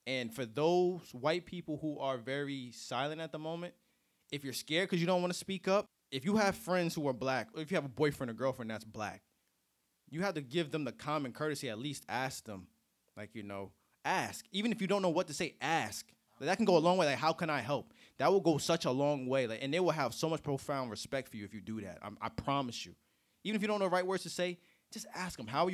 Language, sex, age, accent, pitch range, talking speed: English, male, 20-39, American, 125-170 Hz, 275 wpm